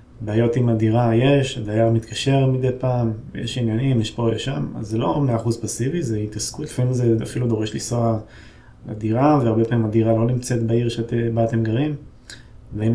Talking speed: 170 wpm